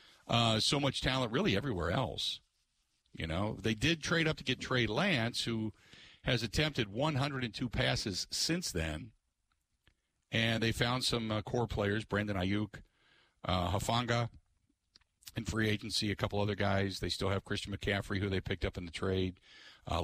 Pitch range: 100-130 Hz